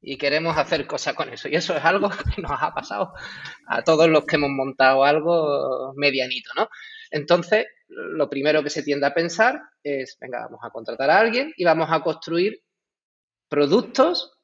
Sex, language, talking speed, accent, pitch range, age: male, Spanish, 180 wpm, Spanish, 140-180 Hz, 30-49